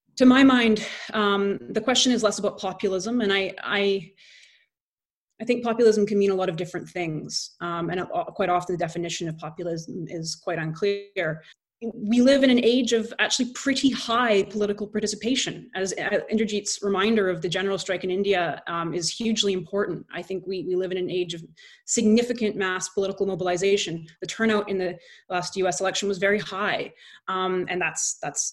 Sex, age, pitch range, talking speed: female, 20-39, 170-210 Hz, 180 wpm